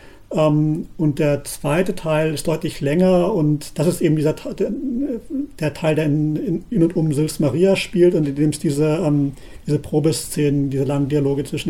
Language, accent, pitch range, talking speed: German, German, 145-180 Hz, 165 wpm